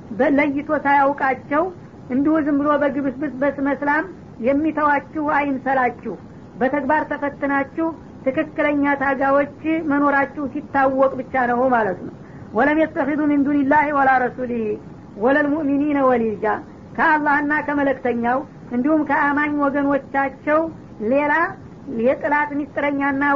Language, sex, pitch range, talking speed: Amharic, female, 275-295 Hz, 95 wpm